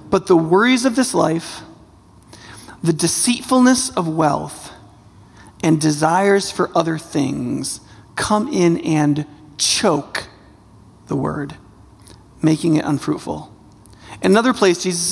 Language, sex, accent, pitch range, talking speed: English, male, American, 145-195 Hz, 110 wpm